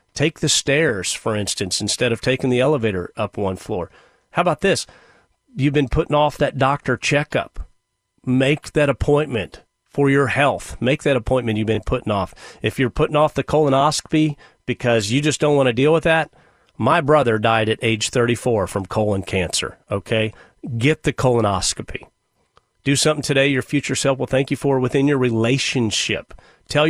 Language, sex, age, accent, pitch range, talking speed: English, male, 40-59, American, 105-145 Hz, 175 wpm